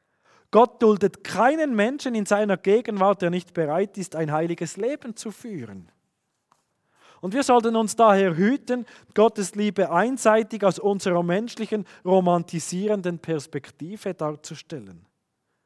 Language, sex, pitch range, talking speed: German, male, 170-215 Hz, 120 wpm